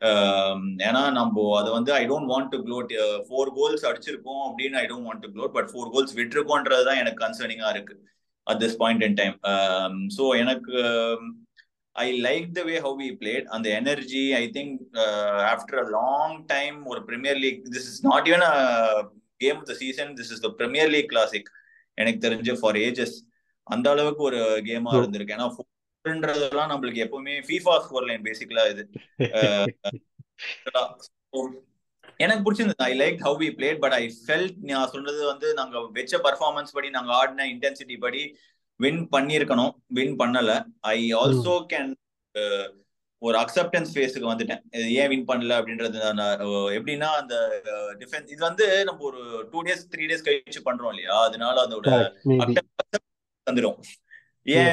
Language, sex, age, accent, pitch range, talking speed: Tamil, male, 30-49, native, 115-150 Hz, 100 wpm